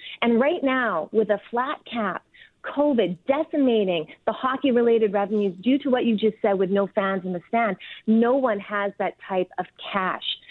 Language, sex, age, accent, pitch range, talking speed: English, female, 30-49, American, 195-235 Hz, 175 wpm